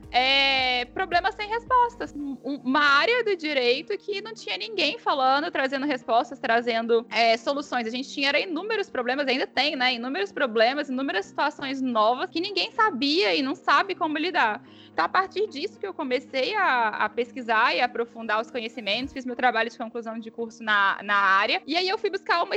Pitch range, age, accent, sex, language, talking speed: 240-330 Hz, 10-29, Brazilian, female, Portuguese, 180 wpm